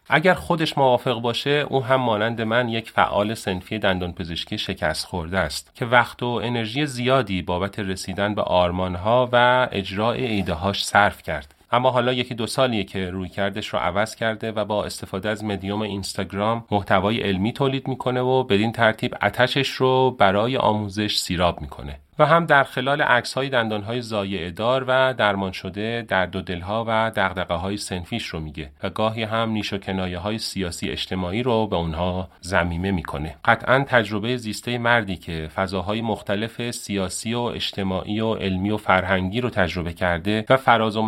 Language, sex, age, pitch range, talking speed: Persian, male, 30-49, 95-120 Hz, 165 wpm